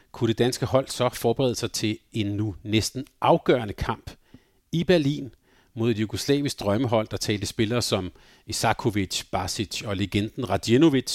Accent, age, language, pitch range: native, 40-59, Danish, 105-130 Hz